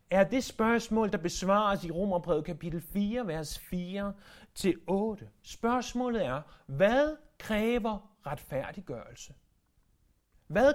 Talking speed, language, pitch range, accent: 95 wpm, Danish, 160-220 Hz, native